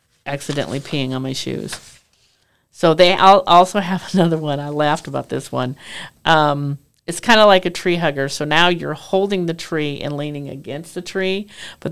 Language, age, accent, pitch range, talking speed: English, 50-69, American, 145-180 Hz, 180 wpm